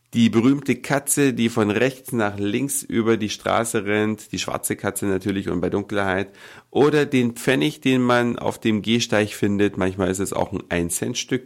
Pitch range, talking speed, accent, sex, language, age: 100-130 Hz, 180 wpm, German, male, German, 50-69